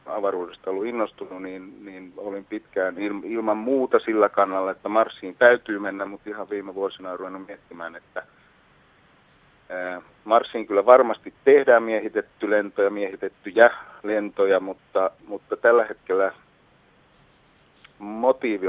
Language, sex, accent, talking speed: Finnish, male, native, 115 wpm